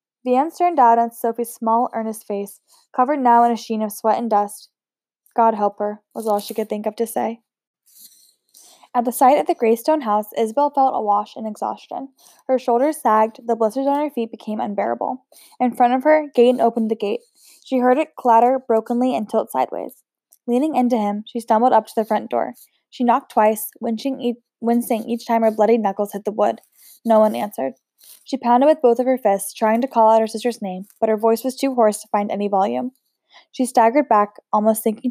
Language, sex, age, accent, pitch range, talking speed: English, female, 10-29, American, 215-250 Hz, 210 wpm